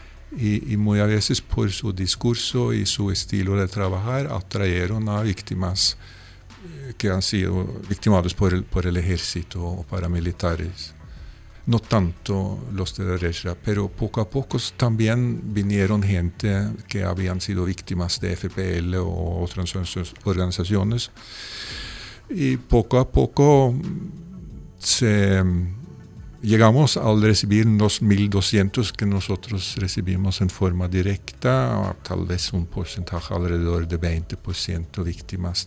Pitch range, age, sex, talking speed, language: 90-110 Hz, 50-69, male, 120 wpm, Spanish